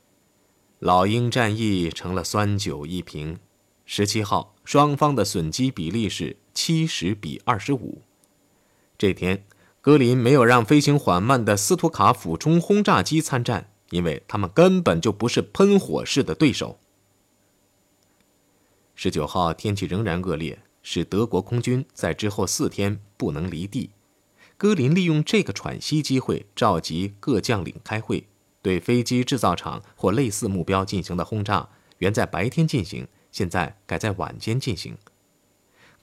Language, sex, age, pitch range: Chinese, male, 20-39, 95-145 Hz